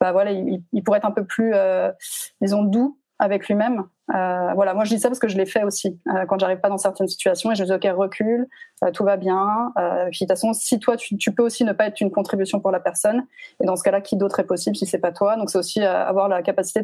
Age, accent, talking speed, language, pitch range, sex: 30-49, French, 285 wpm, French, 190-215 Hz, female